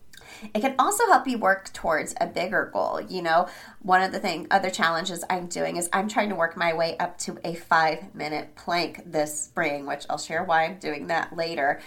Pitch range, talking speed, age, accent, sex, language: 165-225 Hz, 205 wpm, 30-49, American, female, English